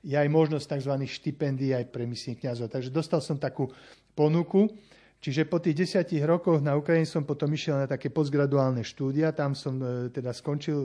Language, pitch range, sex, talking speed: Slovak, 135-170 Hz, male, 185 wpm